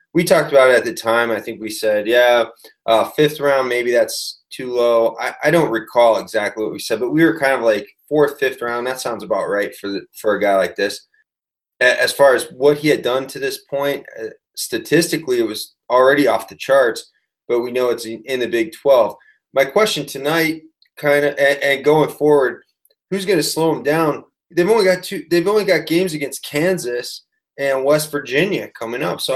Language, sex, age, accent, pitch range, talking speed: English, male, 20-39, American, 115-155 Hz, 210 wpm